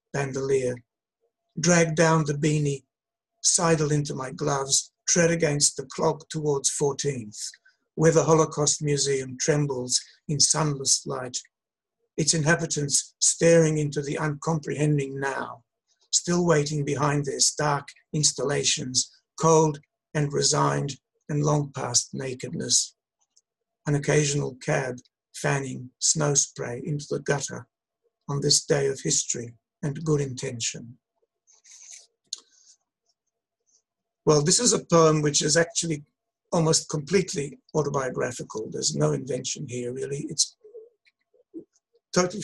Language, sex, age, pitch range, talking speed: English, male, 60-79, 140-170 Hz, 110 wpm